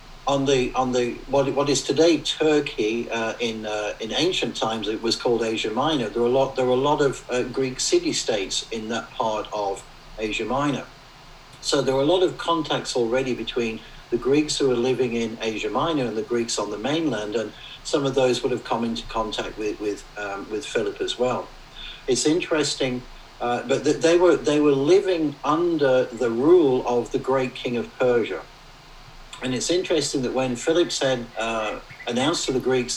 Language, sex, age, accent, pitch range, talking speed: English, male, 60-79, British, 120-170 Hz, 200 wpm